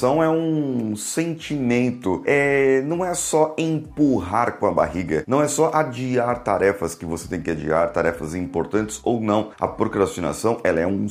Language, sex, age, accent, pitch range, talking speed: Portuguese, male, 30-49, Brazilian, 95-140 Hz, 155 wpm